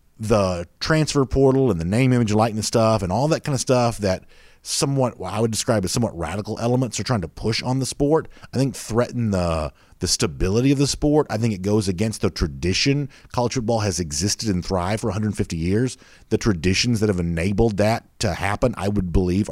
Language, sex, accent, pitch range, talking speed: English, male, American, 95-135 Hz, 210 wpm